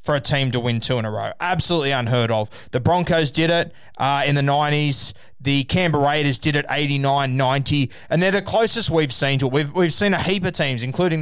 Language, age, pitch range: English, 20-39, 125-160 Hz